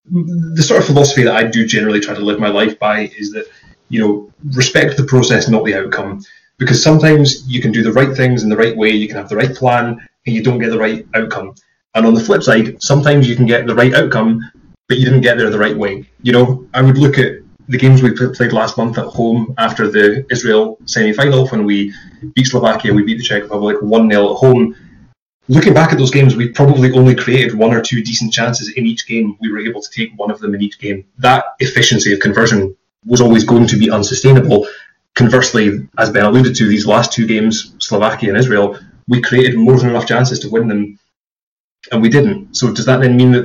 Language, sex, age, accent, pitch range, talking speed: English, male, 20-39, British, 110-130 Hz, 230 wpm